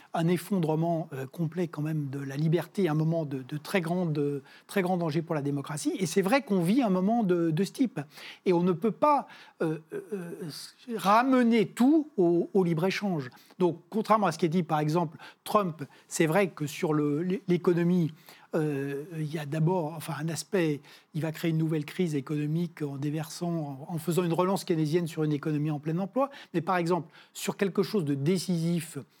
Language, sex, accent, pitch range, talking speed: French, male, French, 155-195 Hz, 200 wpm